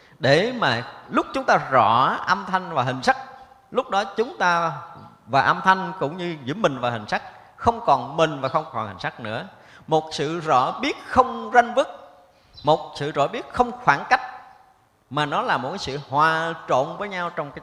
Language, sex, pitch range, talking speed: Vietnamese, male, 125-205 Hz, 200 wpm